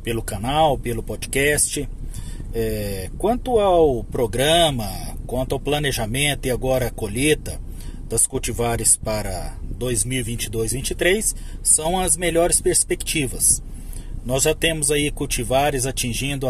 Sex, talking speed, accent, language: male, 110 wpm, Brazilian, Portuguese